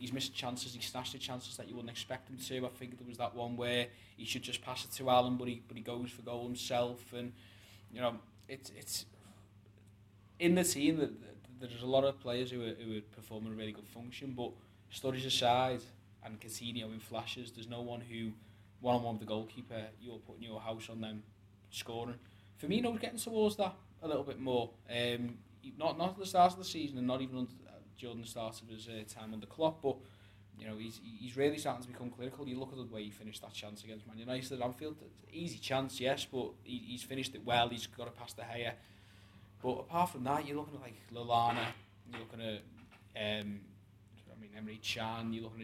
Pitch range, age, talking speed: 105-125 Hz, 20-39, 225 wpm